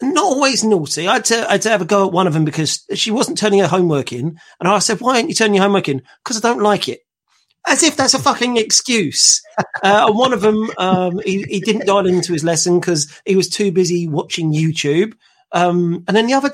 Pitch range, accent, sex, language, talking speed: 175-240 Hz, British, male, English, 250 wpm